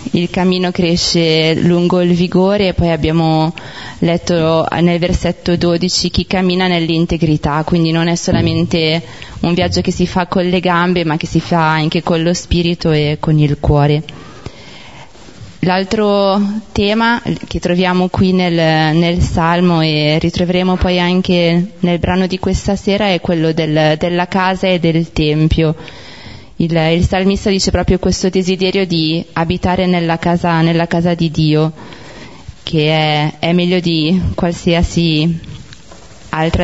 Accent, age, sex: native, 20-39, female